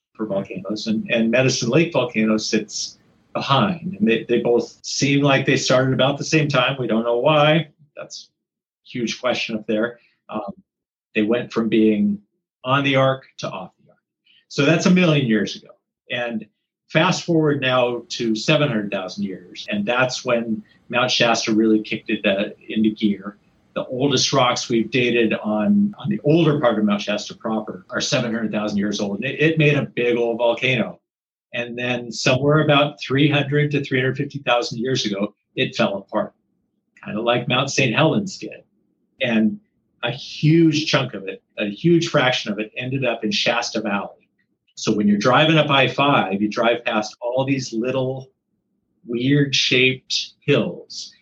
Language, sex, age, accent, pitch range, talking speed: English, male, 50-69, American, 110-145 Hz, 165 wpm